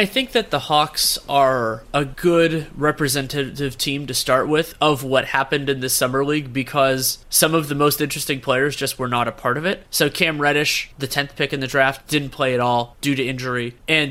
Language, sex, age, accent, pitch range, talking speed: English, male, 30-49, American, 130-160 Hz, 215 wpm